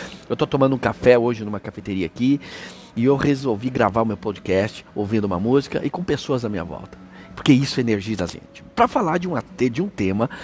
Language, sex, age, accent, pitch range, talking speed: Portuguese, male, 60-79, Brazilian, 100-145 Hz, 220 wpm